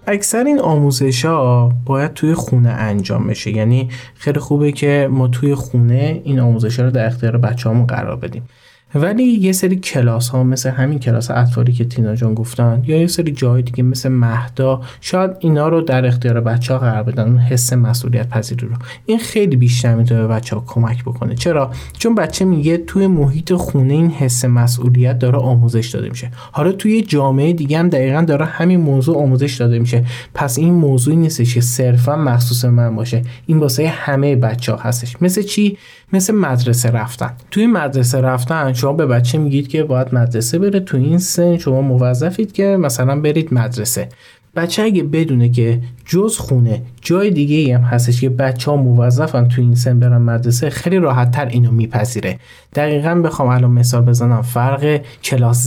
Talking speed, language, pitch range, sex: 170 wpm, Persian, 120-155 Hz, male